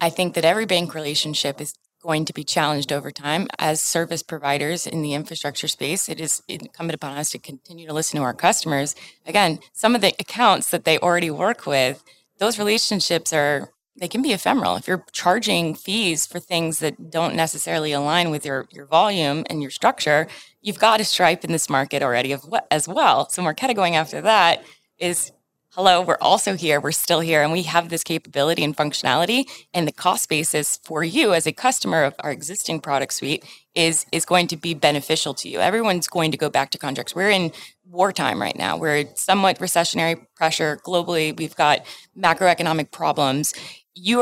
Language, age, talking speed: English, 20-39, 195 wpm